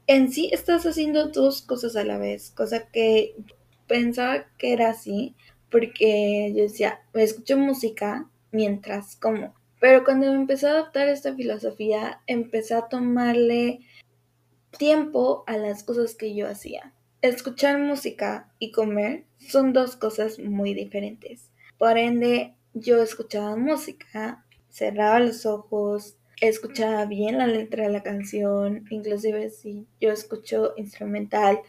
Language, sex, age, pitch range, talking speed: Spanish, female, 20-39, 205-240 Hz, 135 wpm